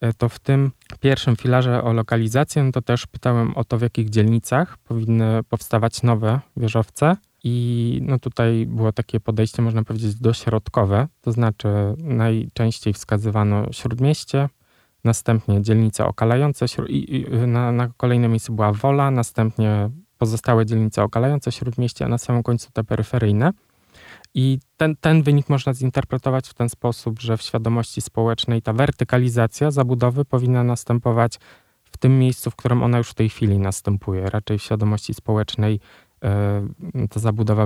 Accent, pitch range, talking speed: native, 105-125 Hz, 145 wpm